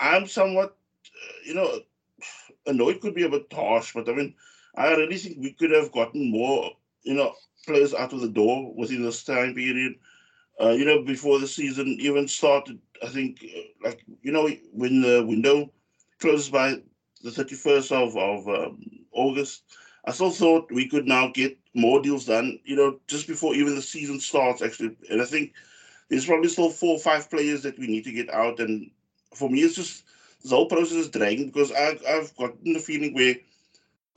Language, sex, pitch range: English, male, 125-165 Hz